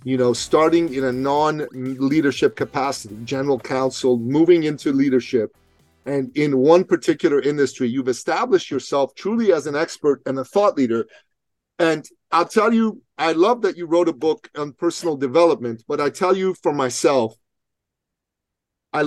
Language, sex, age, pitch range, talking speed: English, male, 40-59, 135-170 Hz, 155 wpm